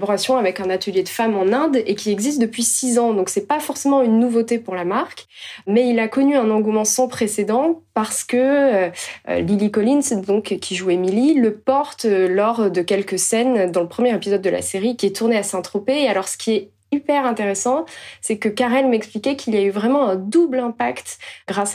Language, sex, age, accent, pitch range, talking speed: French, female, 20-39, French, 190-245 Hz, 210 wpm